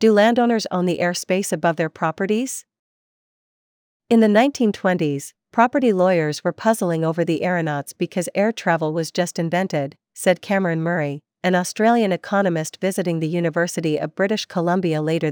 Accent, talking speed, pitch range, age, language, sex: American, 145 wpm, 165-210 Hz, 40-59, English, female